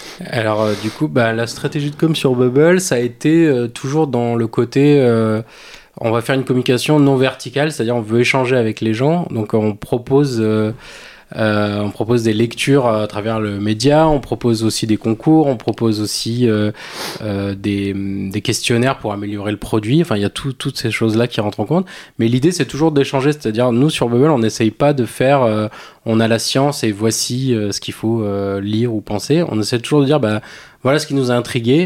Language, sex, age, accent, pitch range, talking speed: French, male, 20-39, French, 110-135 Hz, 220 wpm